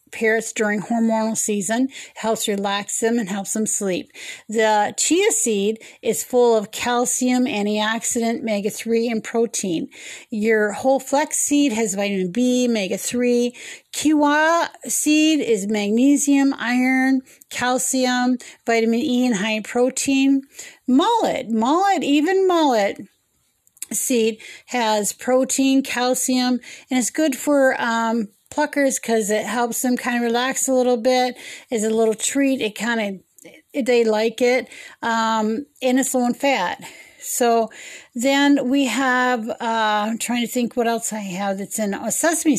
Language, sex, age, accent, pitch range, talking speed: English, female, 40-59, American, 225-270 Hz, 140 wpm